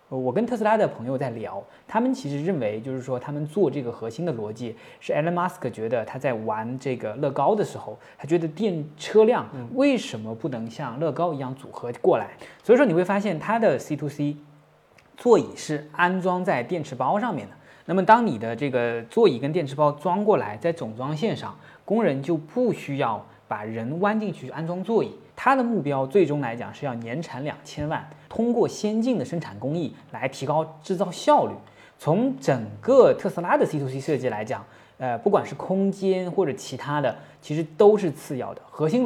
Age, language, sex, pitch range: 20-39, Chinese, male, 125-185 Hz